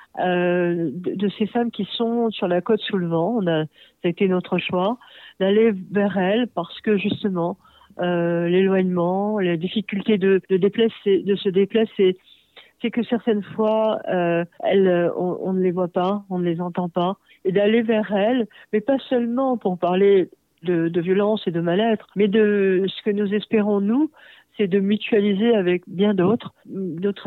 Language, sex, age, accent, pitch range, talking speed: French, female, 50-69, French, 180-210 Hz, 180 wpm